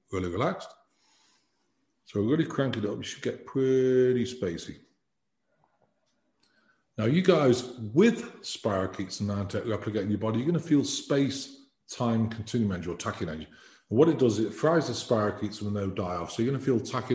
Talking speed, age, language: 175 wpm, 40-59, English